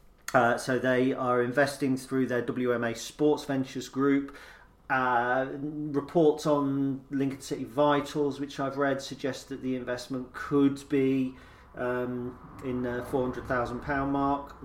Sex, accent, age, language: male, British, 40-59, English